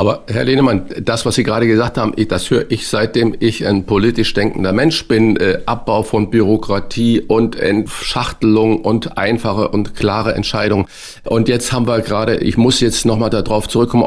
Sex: male